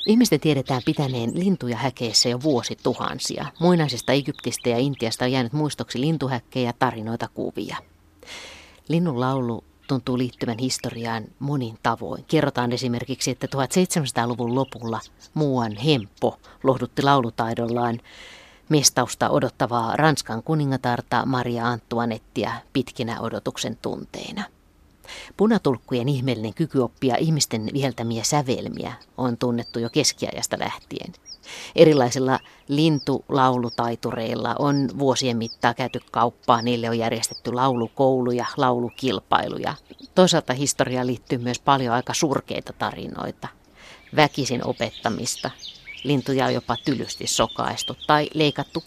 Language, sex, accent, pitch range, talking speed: Finnish, female, native, 120-140 Hz, 105 wpm